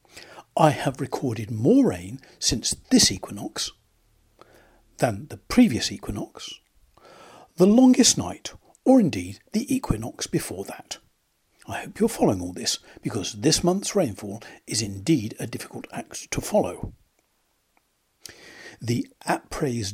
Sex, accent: male, British